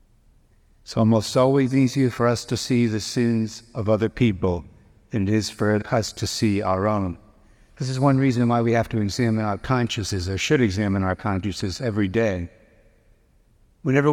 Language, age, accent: English, 60-79, American